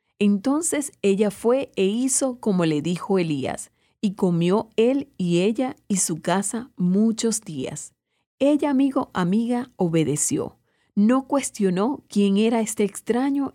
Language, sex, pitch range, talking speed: Spanish, female, 180-235 Hz, 130 wpm